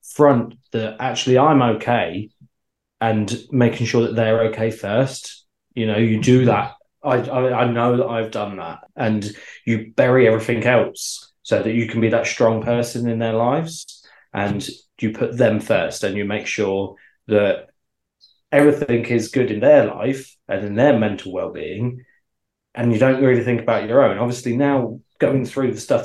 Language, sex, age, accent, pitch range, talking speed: English, male, 20-39, British, 110-130 Hz, 175 wpm